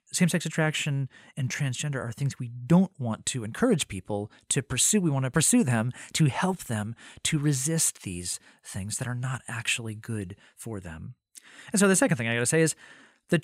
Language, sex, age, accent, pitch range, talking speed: English, male, 30-49, American, 125-180 Hz, 195 wpm